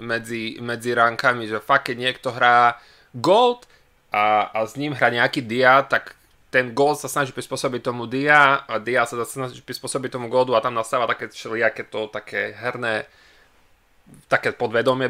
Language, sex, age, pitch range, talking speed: Slovak, male, 20-39, 125-160 Hz, 165 wpm